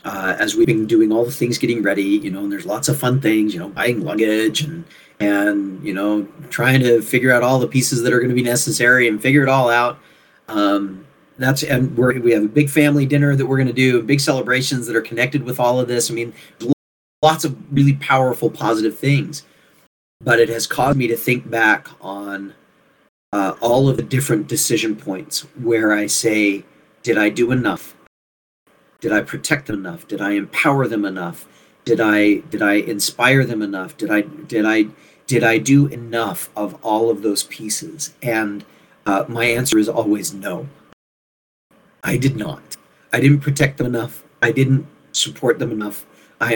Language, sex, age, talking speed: English, male, 40-59, 195 wpm